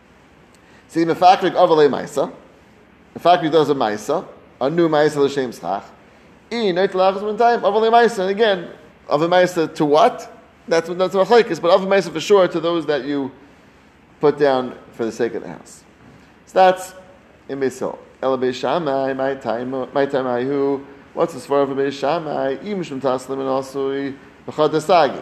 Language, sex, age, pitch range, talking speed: English, male, 30-49, 130-180 Hz, 105 wpm